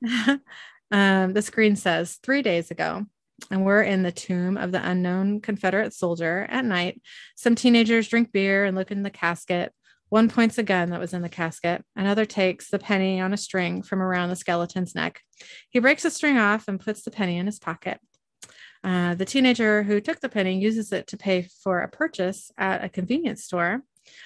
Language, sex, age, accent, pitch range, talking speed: English, female, 30-49, American, 180-210 Hz, 195 wpm